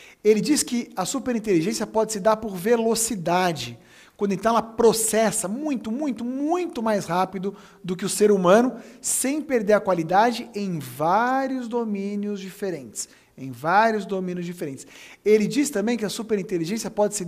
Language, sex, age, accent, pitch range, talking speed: Portuguese, male, 50-69, Brazilian, 185-230 Hz, 155 wpm